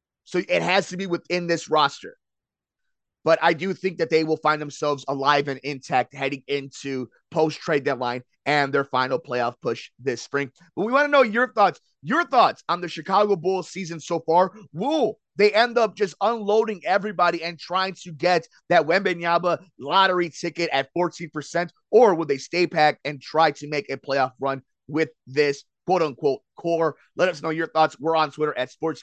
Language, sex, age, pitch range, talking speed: English, male, 30-49, 145-190 Hz, 190 wpm